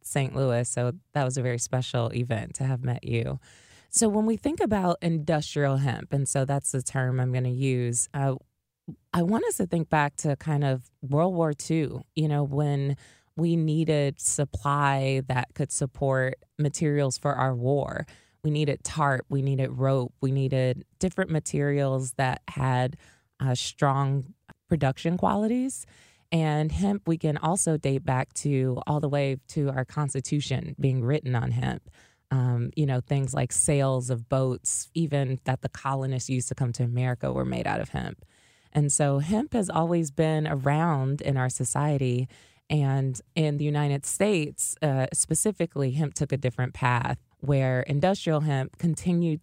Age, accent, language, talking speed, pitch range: 20-39, American, English, 165 wpm, 130-150 Hz